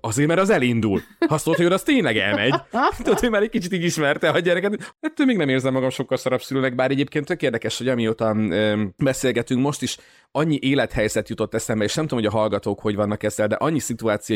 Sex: male